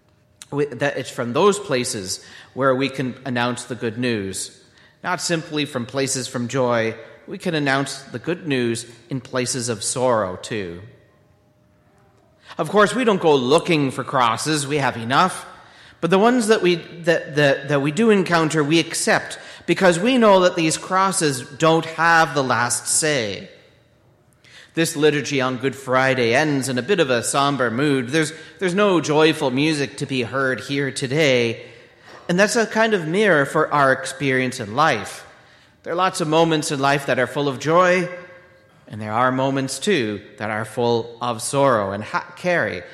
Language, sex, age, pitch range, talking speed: English, male, 40-59, 125-160 Hz, 170 wpm